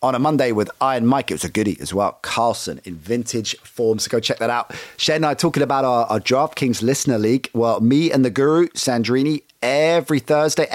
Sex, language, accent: male, English, British